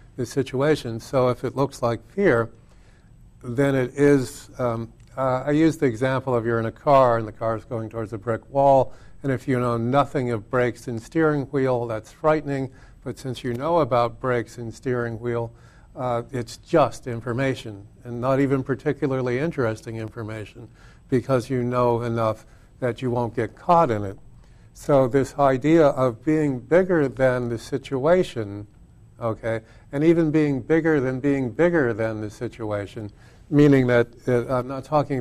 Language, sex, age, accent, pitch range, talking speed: English, male, 50-69, American, 115-135 Hz, 170 wpm